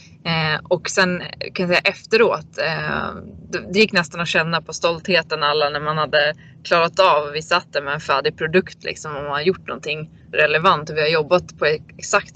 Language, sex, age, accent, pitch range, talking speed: Swedish, female, 20-39, native, 155-185 Hz, 200 wpm